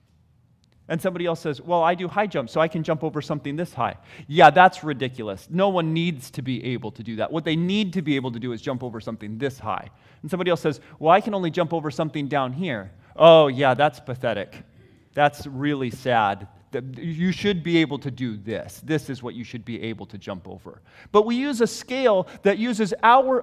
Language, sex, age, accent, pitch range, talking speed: English, male, 30-49, American, 130-195 Hz, 225 wpm